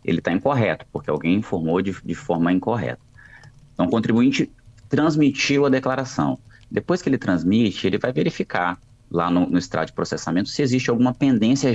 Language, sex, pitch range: Portuguese, male, 95-130 Hz